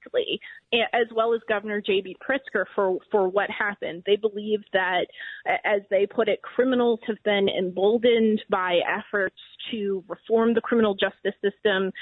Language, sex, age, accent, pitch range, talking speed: English, female, 30-49, American, 190-220 Hz, 145 wpm